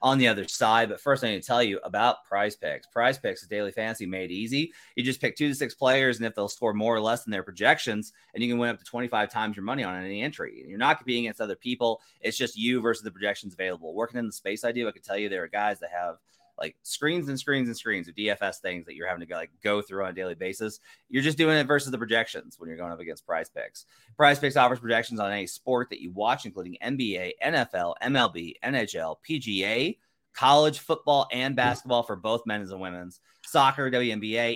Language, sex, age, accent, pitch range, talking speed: English, male, 30-49, American, 105-140 Hz, 245 wpm